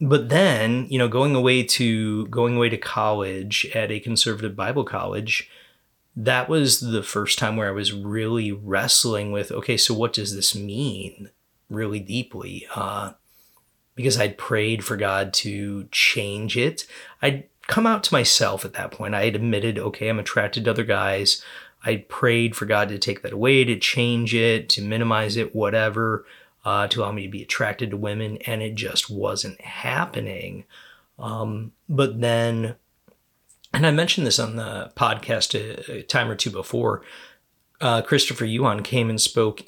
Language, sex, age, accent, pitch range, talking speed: English, male, 30-49, American, 105-120 Hz, 170 wpm